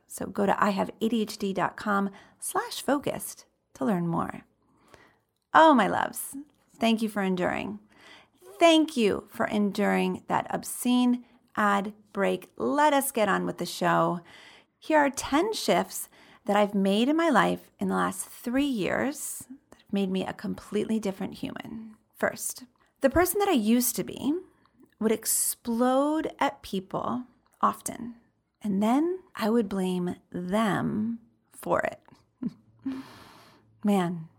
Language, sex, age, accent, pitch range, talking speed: English, female, 40-59, American, 200-265 Hz, 130 wpm